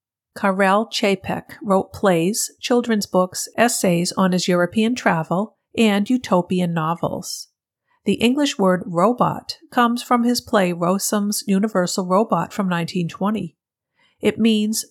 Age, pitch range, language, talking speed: 50-69, 175-220 Hz, English, 115 wpm